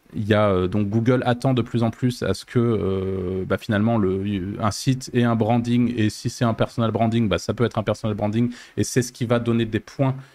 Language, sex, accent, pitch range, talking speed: French, male, French, 100-125 Hz, 225 wpm